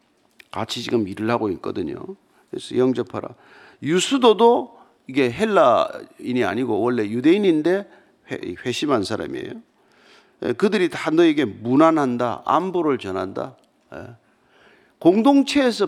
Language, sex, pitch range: Korean, male, 150-230 Hz